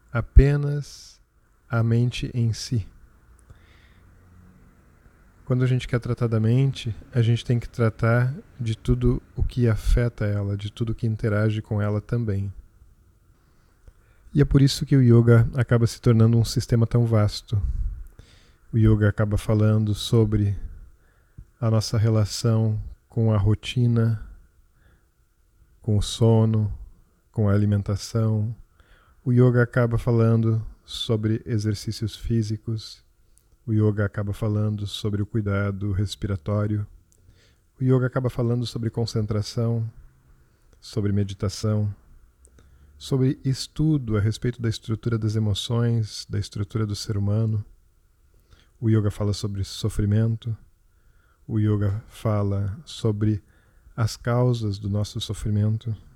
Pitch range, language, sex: 100-115 Hz, English, male